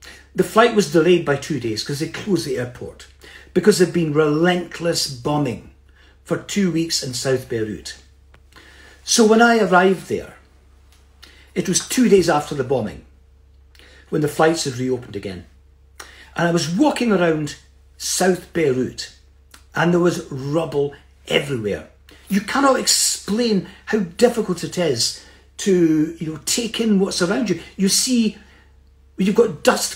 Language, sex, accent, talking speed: English, male, British, 145 wpm